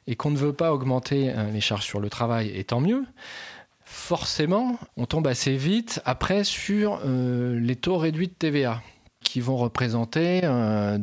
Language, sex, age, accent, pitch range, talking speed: French, male, 30-49, French, 110-150 Hz, 170 wpm